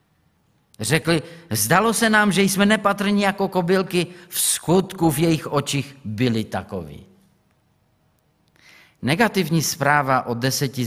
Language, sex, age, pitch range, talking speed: Czech, male, 30-49, 120-170 Hz, 110 wpm